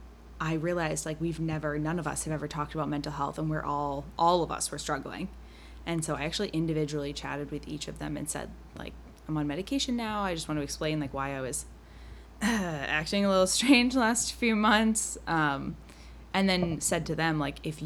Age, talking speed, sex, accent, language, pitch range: 20-39, 215 wpm, female, American, English, 145-185 Hz